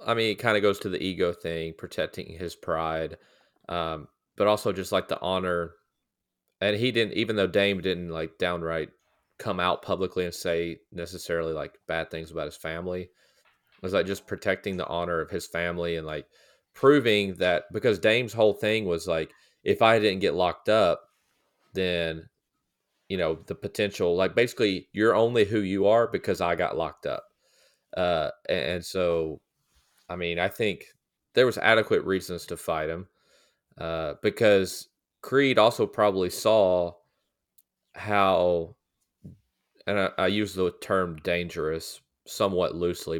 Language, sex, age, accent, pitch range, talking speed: English, male, 30-49, American, 85-100 Hz, 160 wpm